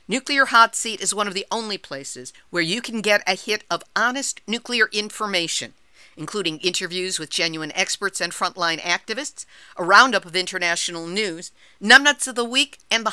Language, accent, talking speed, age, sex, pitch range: English, American, 175 wpm, 50-69, female, 170-235 Hz